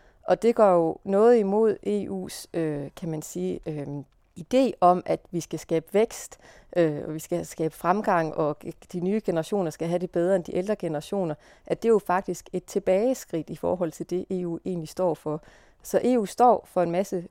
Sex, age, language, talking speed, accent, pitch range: female, 30-49, Danish, 200 wpm, native, 165-200 Hz